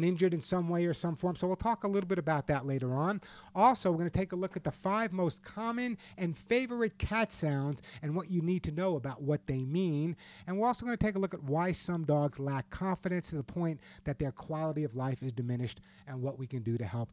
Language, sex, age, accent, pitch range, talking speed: English, male, 50-69, American, 150-185 Hz, 260 wpm